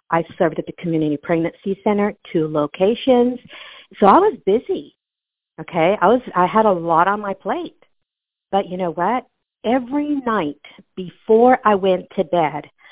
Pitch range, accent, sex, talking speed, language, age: 170-255 Hz, American, female, 155 wpm, English, 50-69